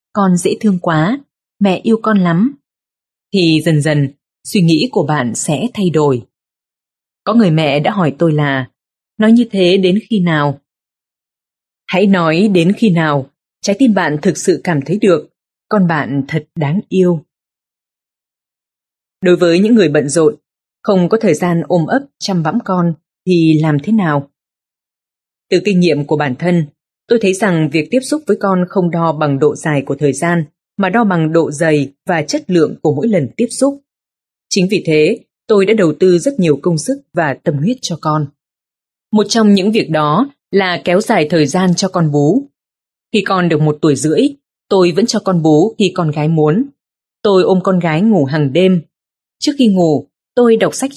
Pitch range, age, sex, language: 155-205 Hz, 20-39, female, Vietnamese